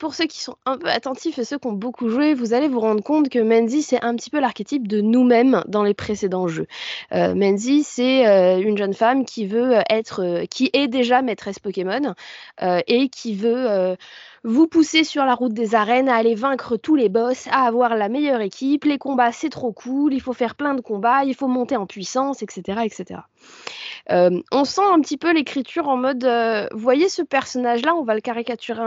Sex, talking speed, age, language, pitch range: female, 220 wpm, 20-39, French, 215-280 Hz